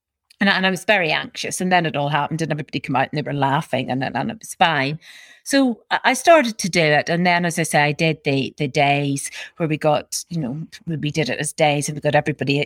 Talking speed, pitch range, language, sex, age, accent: 260 wpm, 150-185 Hz, English, female, 40-59, British